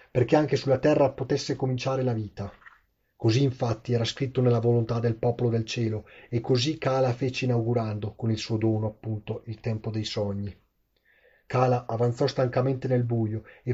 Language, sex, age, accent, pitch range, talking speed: Italian, male, 30-49, native, 115-135 Hz, 165 wpm